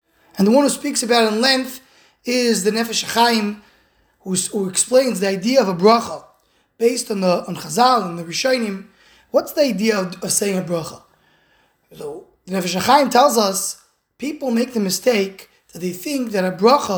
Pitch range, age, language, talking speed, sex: 195-245 Hz, 20-39, English, 175 wpm, male